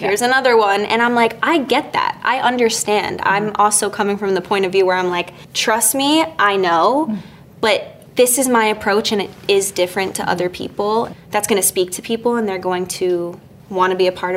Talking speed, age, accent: 220 wpm, 20-39, American